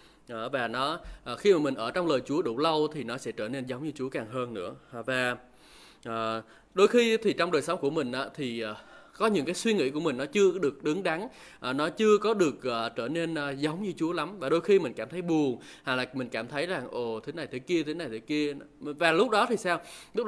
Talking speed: 245 wpm